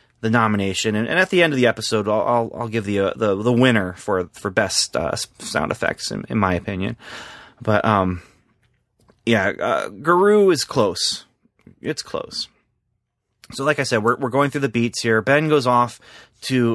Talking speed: 195 wpm